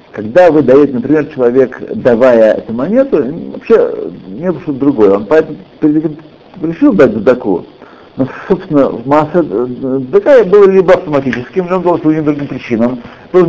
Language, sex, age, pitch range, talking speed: Russian, male, 60-79, 130-180 Hz, 140 wpm